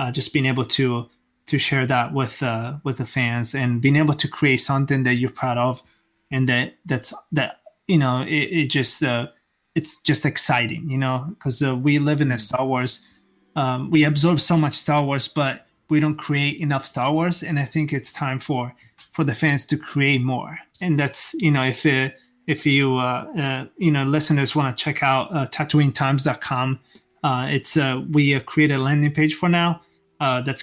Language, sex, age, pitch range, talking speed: English, male, 20-39, 130-150 Hz, 200 wpm